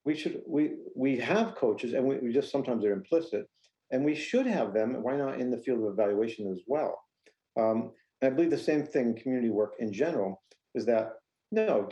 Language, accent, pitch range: English, American, 105-125 Hz